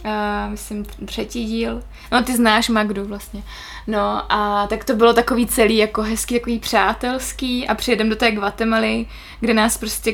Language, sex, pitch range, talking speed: Czech, female, 210-235 Hz, 165 wpm